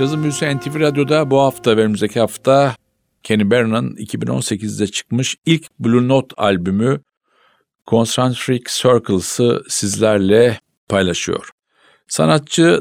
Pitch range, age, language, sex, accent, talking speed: 95-120 Hz, 50-69, Turkish, male, native, 100 wpm